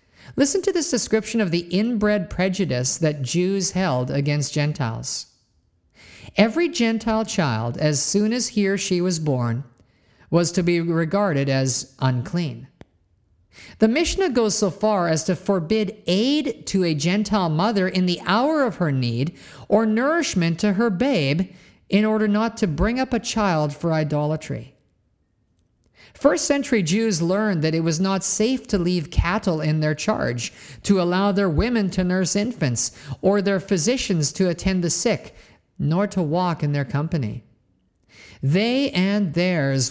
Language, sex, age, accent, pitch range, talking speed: English, male, 50-69, American, 135-205 Hz, 155 wpm